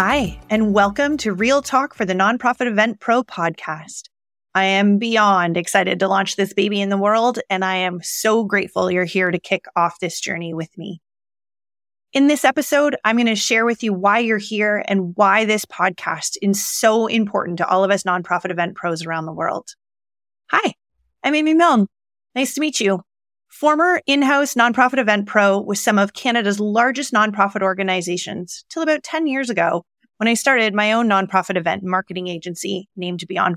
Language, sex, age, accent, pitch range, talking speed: English, female, 30-49, American, 180-230 Hz, 185 wpm